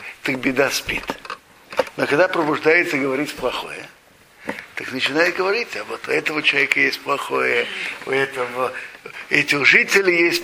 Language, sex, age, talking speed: Russian, male, 60-79, 140 wpm